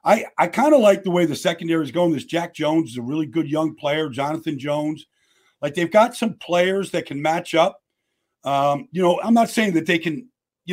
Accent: American